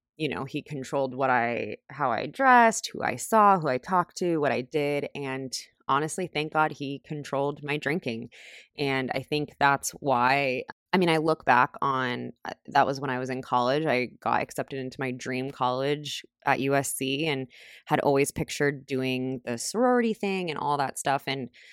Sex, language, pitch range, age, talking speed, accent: female, English, 125-155 Hz, 20-39, 185 wpm, American